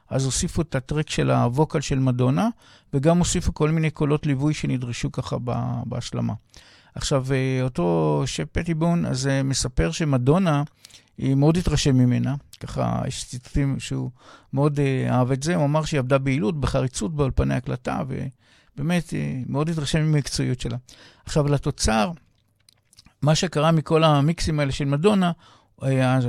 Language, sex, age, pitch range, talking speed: Hebrew, male, 50-69, 125-155 Hz, 135 wpm